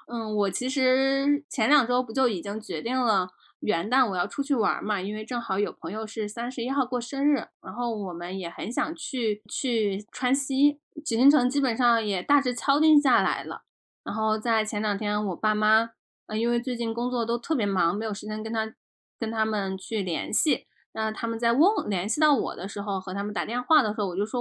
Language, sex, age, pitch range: Chinese, female, 10-29, 210-280 Hz